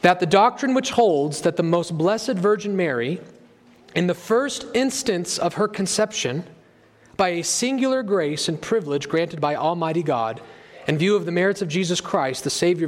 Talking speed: 175 wpm